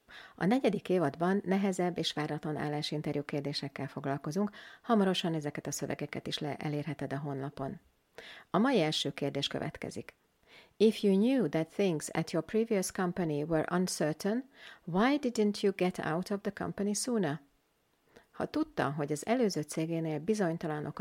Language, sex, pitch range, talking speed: Hungarian, female, 155-210 Hz, 145 wpm